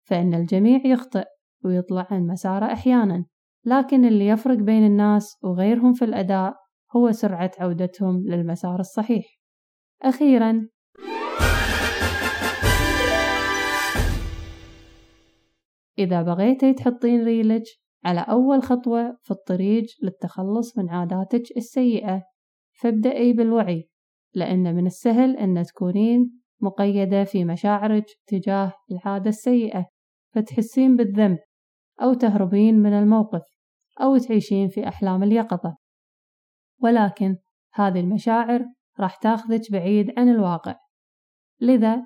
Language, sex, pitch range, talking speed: Arabic, female, 185-240 Hz, 95 wpm